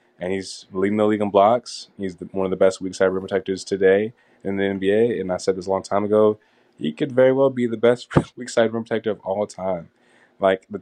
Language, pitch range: English, 95-105 Hz